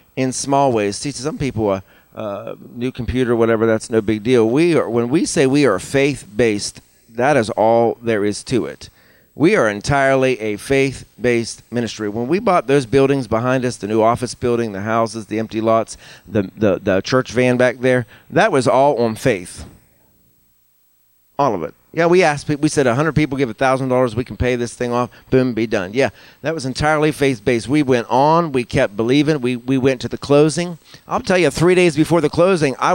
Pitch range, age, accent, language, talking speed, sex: 105-145 Hz, 40-59, American, English, 210 wpm, male